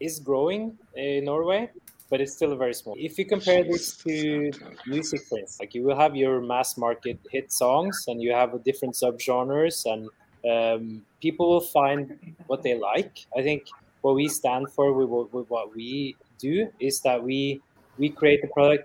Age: 20-39